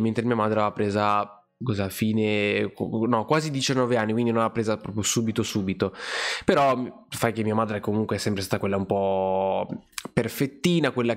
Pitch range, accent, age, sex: 105-125 Hz, native, 20-39, male